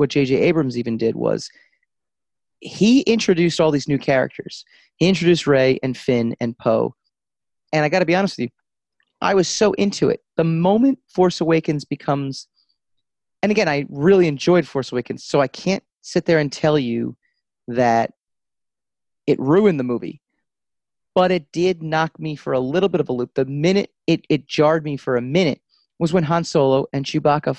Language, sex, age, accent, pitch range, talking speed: English, male, 30-49, American, 140-205 Hz, 185 wpm